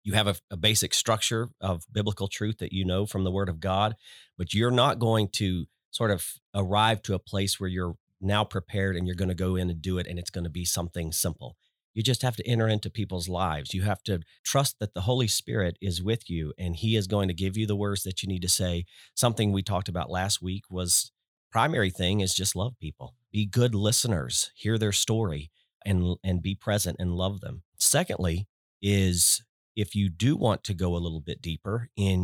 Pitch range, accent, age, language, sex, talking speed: 90-110 Hz, American, 40-59, English, male, 225 wpm